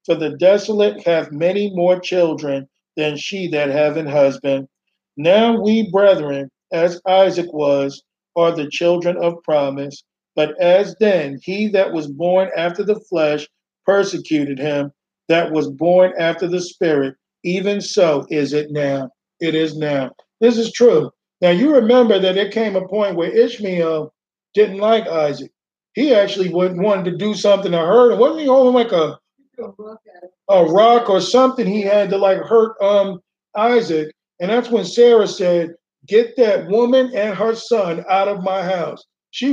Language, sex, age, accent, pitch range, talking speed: English, male, 50-69, American, 165-220 Hz, 160 wpm